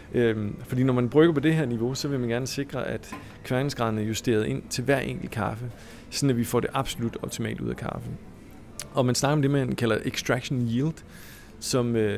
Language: Danish